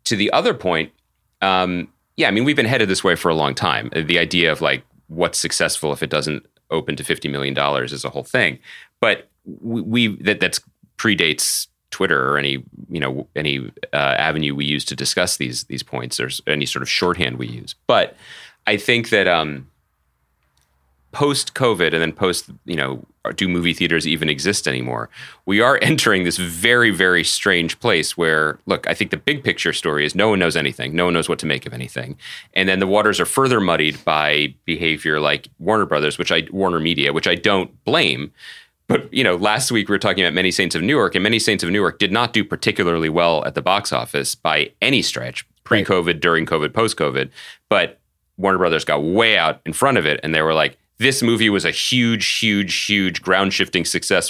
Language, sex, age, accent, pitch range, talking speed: English, male, 30-49, American, 70-95 Hz, 205 wpm